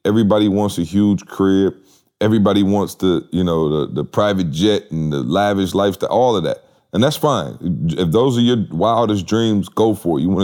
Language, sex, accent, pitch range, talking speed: English, male, American, 95-120 Hz, 205 wpm